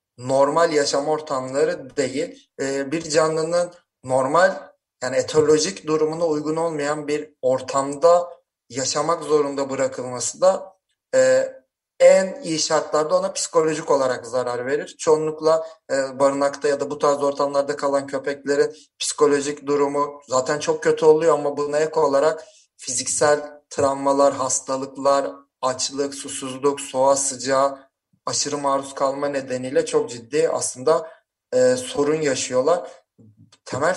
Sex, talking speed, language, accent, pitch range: male, 110 wpm, Turkish, native, 140-170 Hz